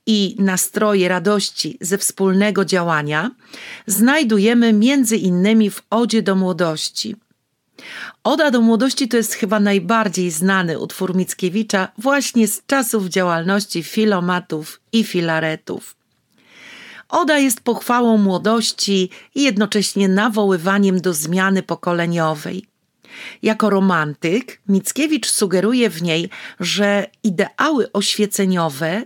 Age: 40-59